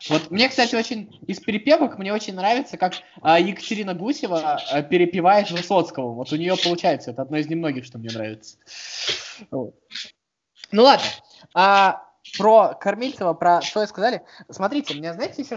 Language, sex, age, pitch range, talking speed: Russian, male, 20-39, 165-225 Hz, 155 wpm